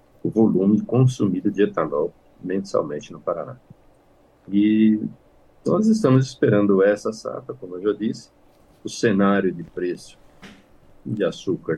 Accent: Brazilian